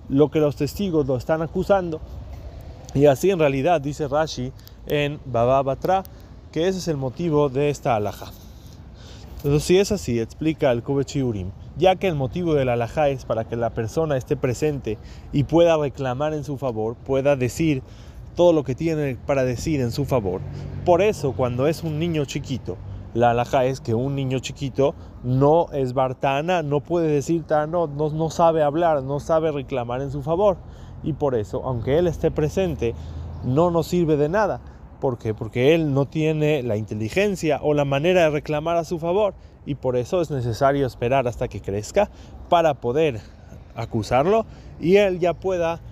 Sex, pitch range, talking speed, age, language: male, 120-160 Hz, 180 wpm, 20-39, Spanish